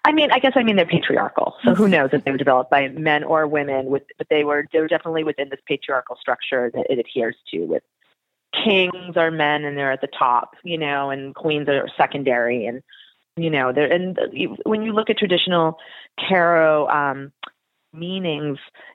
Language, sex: English, female